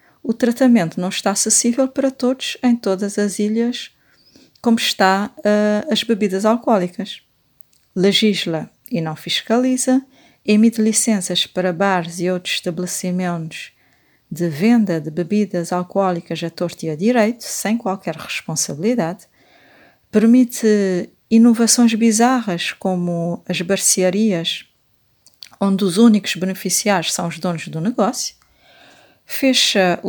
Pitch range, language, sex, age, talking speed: 180-230 Hz, Portuguese, female, 40-59, 110 wpm